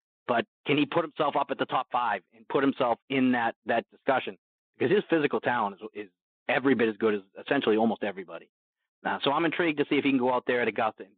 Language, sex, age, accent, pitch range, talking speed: English, male, 40-59, American, 125-155 Hz, 245 wpm